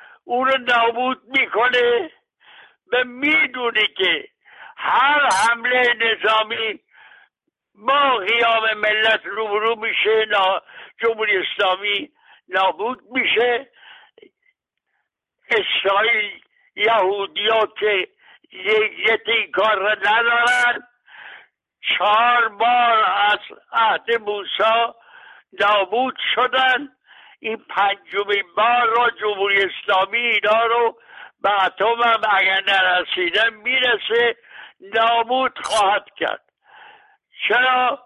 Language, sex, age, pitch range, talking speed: Persian, male, 60-79, 220-260 Hz, 75 wpm